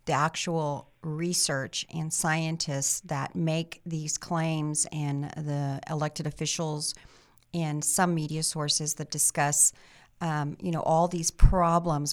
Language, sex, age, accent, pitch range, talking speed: English, female, 40-59, American, 150-175 Hz, 125 wpm